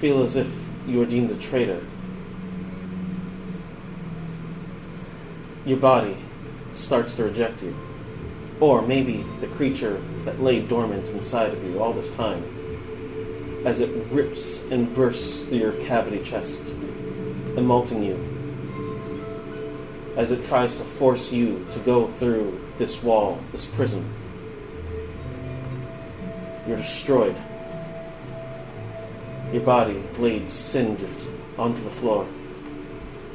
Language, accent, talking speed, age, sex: English, American, 110 wpm, 30-49, male